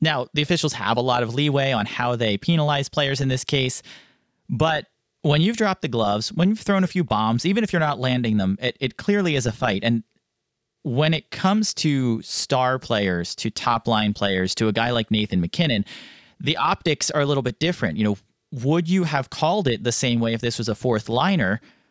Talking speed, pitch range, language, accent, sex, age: 215 wpm, 115-150 Hz, English, American, male, 30-49